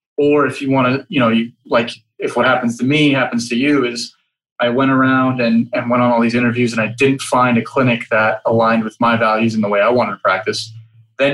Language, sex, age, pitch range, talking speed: English, male, 20-39, 115-135 Hz, 250 wpm